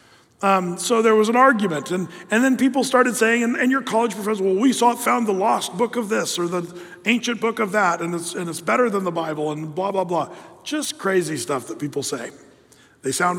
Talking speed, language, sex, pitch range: 235 wpm, English, male, 170-235 Hz